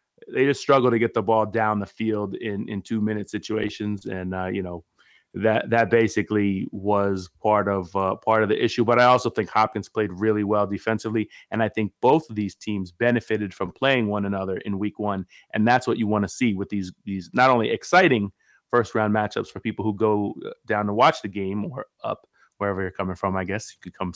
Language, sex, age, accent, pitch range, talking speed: English, male, 30-49, American, 100-110 Hz, 225 wpm